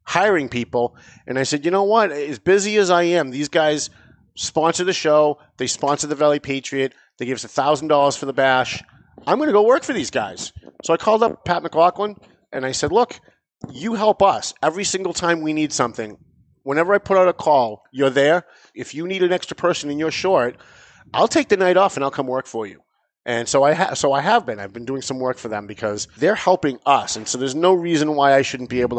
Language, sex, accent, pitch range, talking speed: English, male, American, 130-165 Hz, 230 wpm